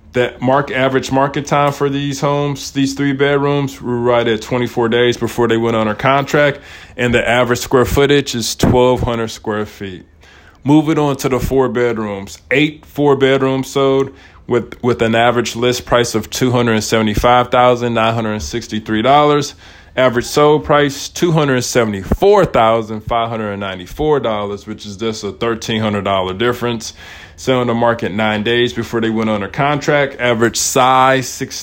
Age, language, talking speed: 20-39, English, 175 wpm